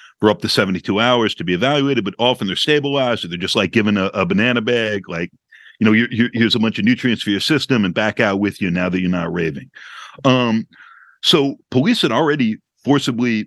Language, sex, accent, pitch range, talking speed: English, male, American, 100-130 Hz, 225 wpm